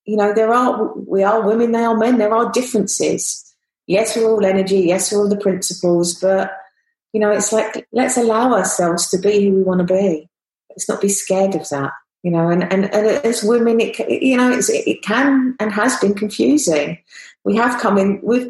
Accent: British